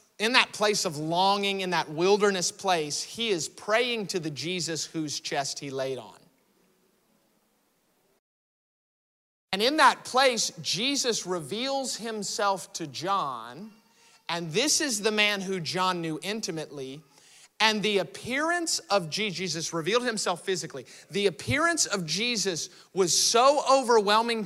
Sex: male